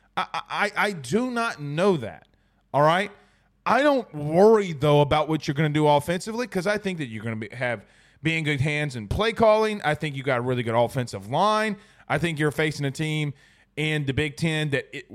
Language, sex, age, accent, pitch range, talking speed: English, male, 30-49, American, 150-215 Hz, 220 wpm